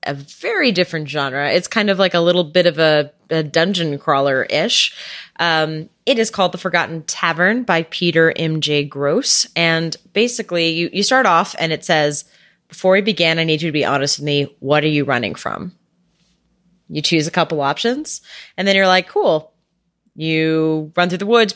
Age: 30-49